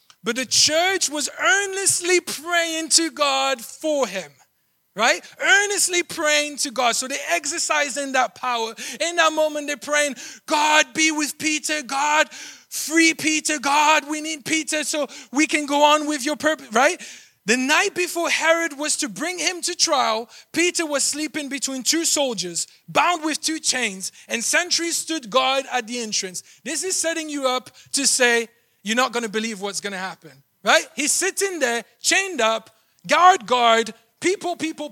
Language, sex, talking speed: English, male, 170 wpm